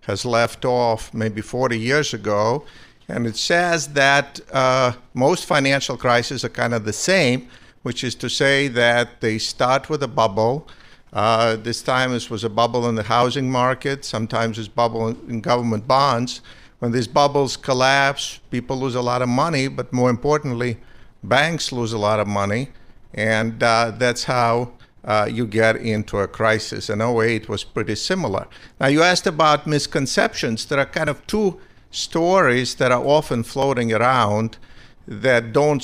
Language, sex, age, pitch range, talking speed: English, male, 50-69, 115-135 Hz, 165 wpm